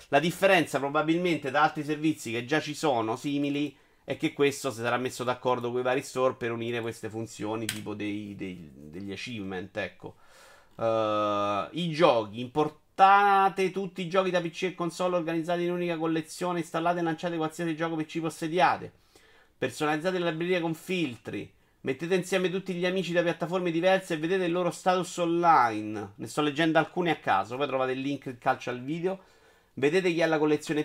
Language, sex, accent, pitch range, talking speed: Italian, male, native, 125-175 Hz, 180 wpm